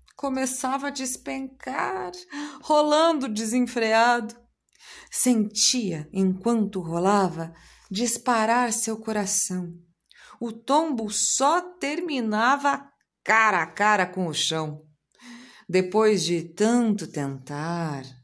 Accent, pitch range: Brazilian, 170-245 Hz